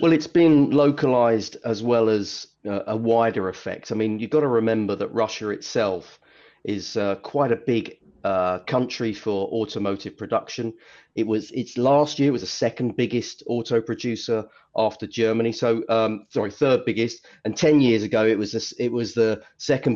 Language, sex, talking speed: English, male, 180 wpm